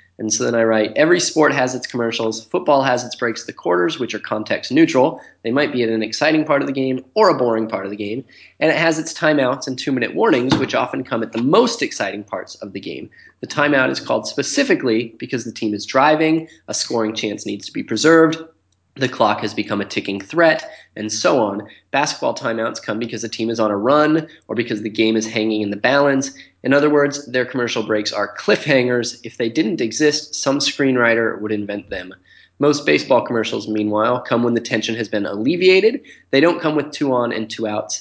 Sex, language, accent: male, English, American